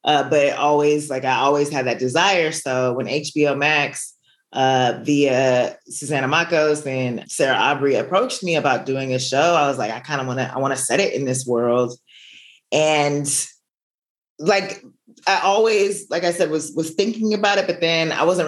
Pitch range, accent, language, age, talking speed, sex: 130-165 Hz, American, English, 20-39, 190 wpm, female